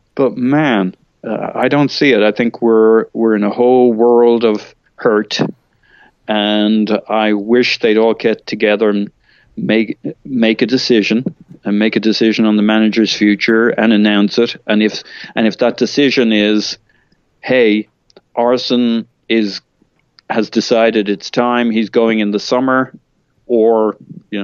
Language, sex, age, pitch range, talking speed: English, male, 40-59, 100-115 Hz, 150 wpm